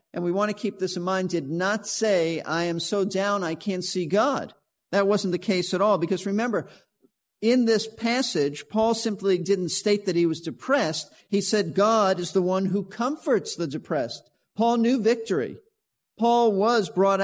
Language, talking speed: English, 190 wpm